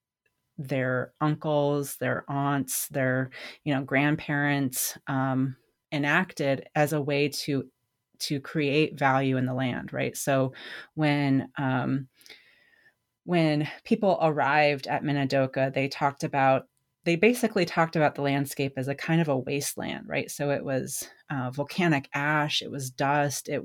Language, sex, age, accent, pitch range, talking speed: English, female, 30-49, American, 135-155 Hz, 140 wpm